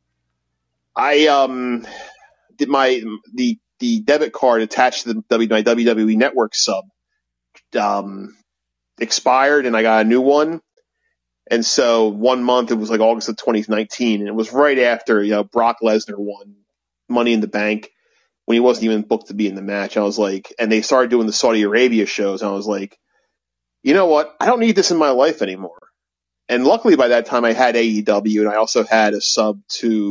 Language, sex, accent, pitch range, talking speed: English, male, American, 100-125 Hz, 200 wpm